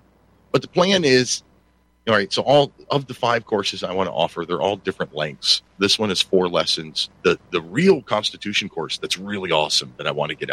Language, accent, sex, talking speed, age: English, American, male, 215 wpm, 40-59